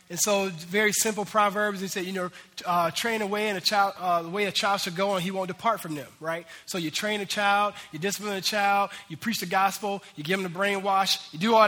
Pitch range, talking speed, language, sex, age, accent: 180-215 Hz, 260 wpm, English, male, 20-39, American